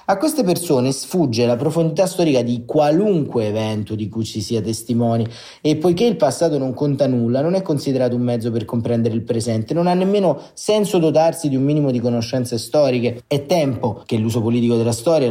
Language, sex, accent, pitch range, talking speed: Italian, male, native, 115-145 Hz, 190 wpm